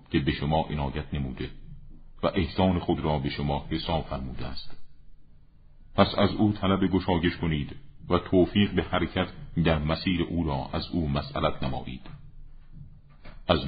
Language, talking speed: Persian, 145 wpm